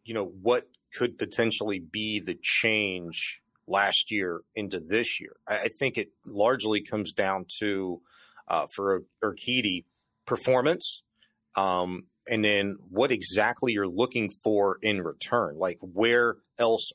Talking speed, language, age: 135 wpm, English, 30-49